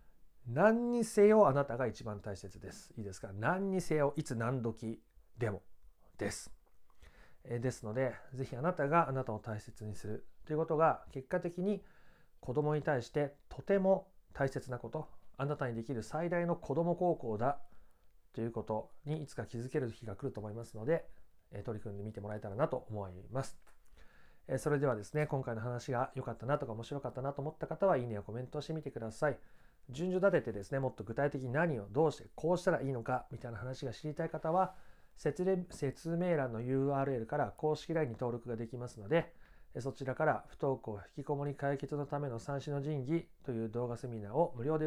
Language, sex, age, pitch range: Japanese, male, 40-59, 115-155 Hz